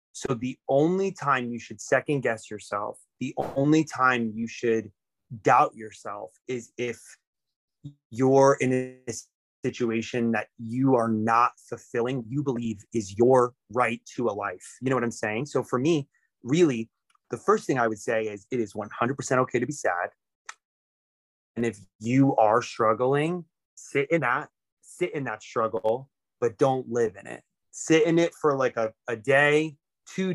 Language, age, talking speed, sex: English, 30-49, 165 wpm, male